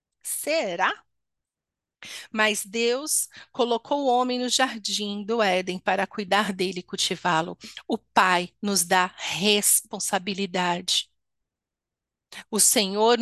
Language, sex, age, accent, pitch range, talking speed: Portuguese, female, 40-59, Brazilian, 195-240 Hz, 100 wpm